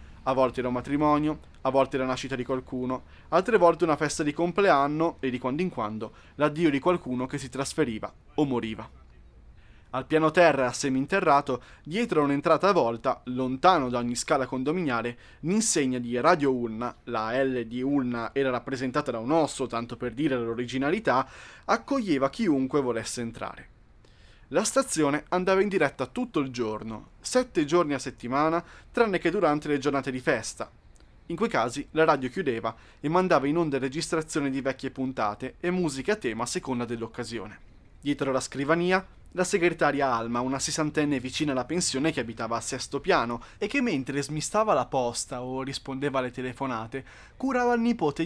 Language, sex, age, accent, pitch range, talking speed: Italian, male, 20-39, native, 125-155 Hz, 170 wpm